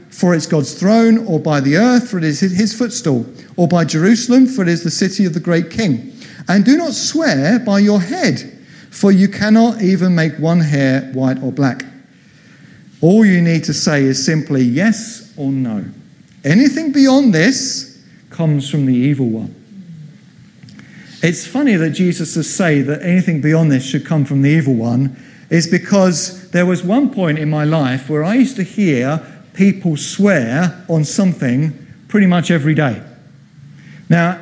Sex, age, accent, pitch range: male, 50-69, British, 150-200 Hz